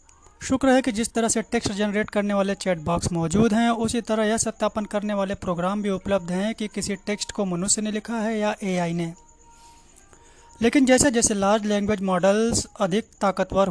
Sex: male